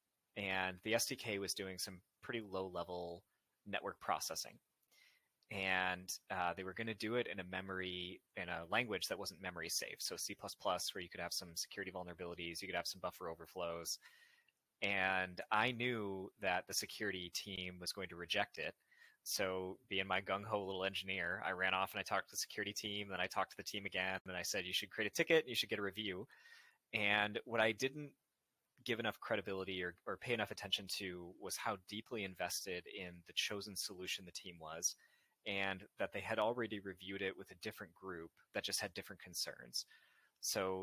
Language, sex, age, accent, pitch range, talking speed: English, male, 20-39, American, 90-105 Hz, 195 wpm